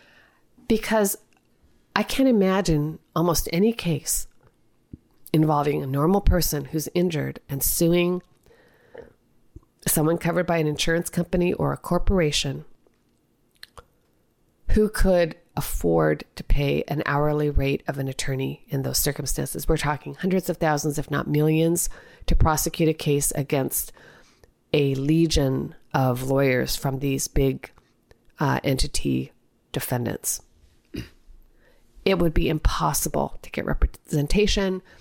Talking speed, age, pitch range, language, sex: 115 wpm, 40-59, 145-180 Hz, English, female